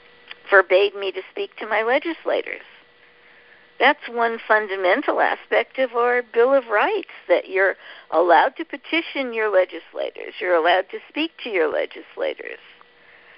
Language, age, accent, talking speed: English, 60-79, American, 135 wpm